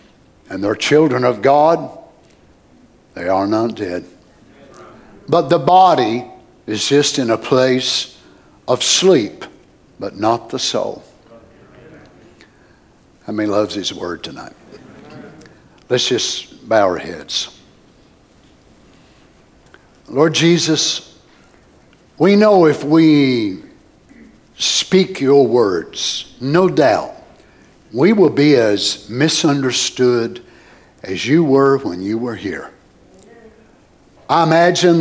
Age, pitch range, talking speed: 60-79, 120-165 Hz, 100 wpm